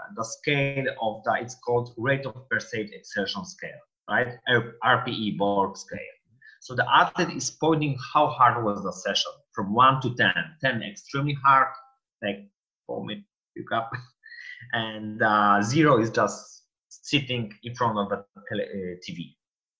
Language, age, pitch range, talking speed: English, 30-49, 120-150 Hz, 140 wpm